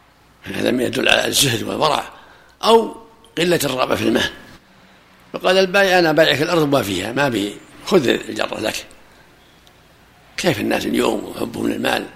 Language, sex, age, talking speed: Arabic, male, 60-79, 140 wpm